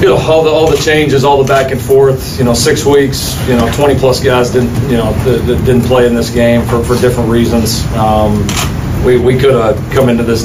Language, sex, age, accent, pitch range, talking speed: English, male, 40-59, American, 115-130 Hz, 240 wpm